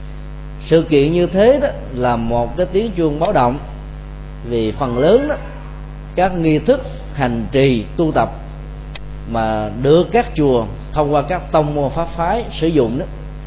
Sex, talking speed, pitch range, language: male, 160 wpm, 130-170 Hz, Vietnamese